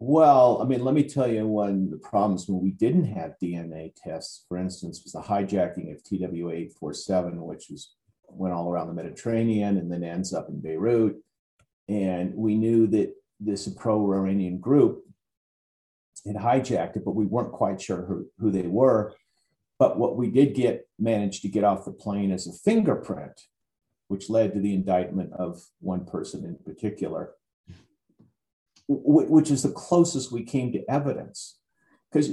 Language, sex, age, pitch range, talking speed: English, male, 40-59, 90-110 Hz, 165 wpm